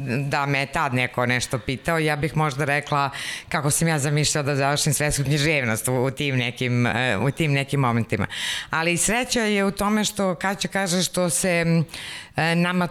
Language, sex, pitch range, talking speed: Slovak, female, 140-185 Hz, 170 wpm